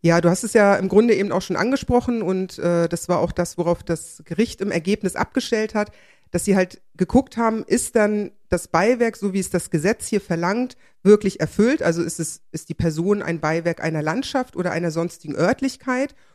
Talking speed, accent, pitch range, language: 200 wpm, German, 170-210 Hz, German